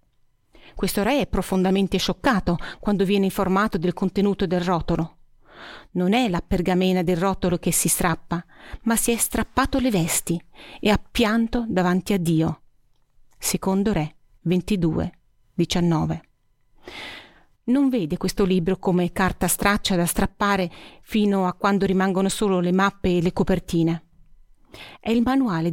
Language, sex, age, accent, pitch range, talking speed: Italian, female, 40-59, native, 180-235 Hz, 140 wpm